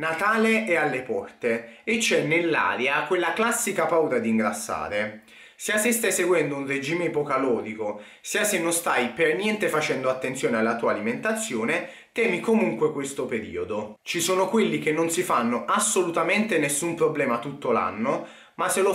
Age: 30-49